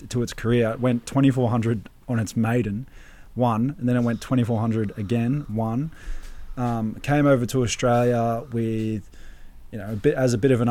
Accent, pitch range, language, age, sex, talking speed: Australian, 110-125 Hz, English, 20-39, male, 180 wpm